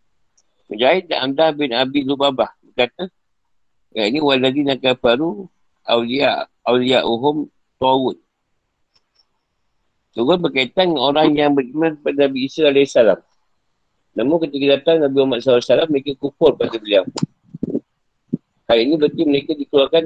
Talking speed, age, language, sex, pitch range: 105 wpm, 50-69, Malay, male, 125-150 Hz